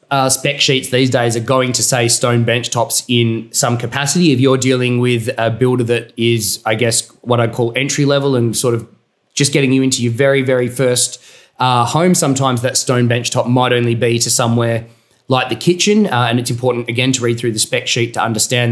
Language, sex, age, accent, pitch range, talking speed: English, male, 20-39, Australian, 115-130 Hz, 220 wpm